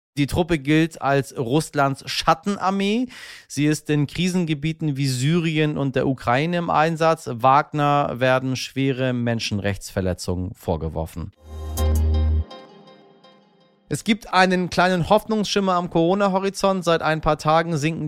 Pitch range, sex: 125-155 Hz, male